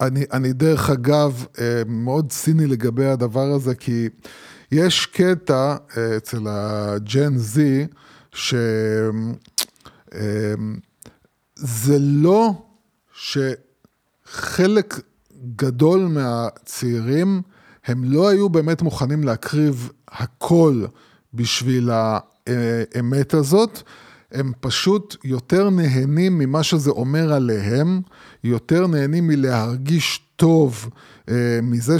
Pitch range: 120-155 Hz